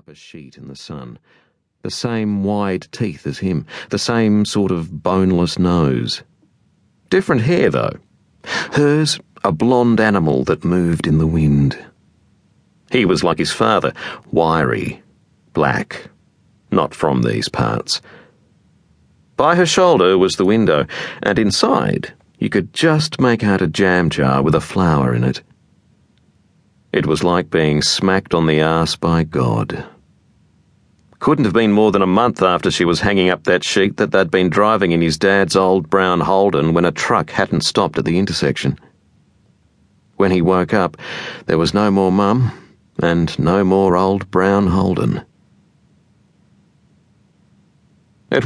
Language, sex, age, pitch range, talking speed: English, male, 50-69, 80-105 Hz, 145 wpm